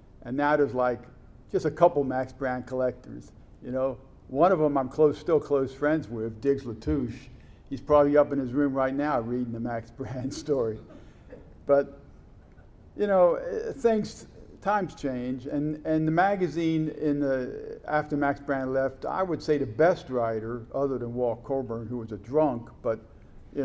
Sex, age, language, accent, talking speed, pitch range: male, 50-69, English, American, 175 wpm, 120-150 Hz